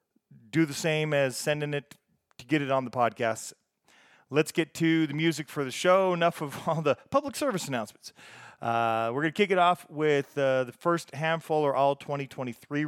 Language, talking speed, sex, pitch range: English, 195 wpm, male, 130-155 Hz